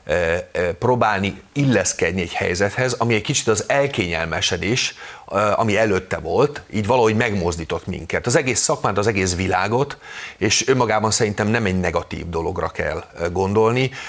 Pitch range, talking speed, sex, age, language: 95-120 Hz, 130 wpm, male, 30-49, Hungarian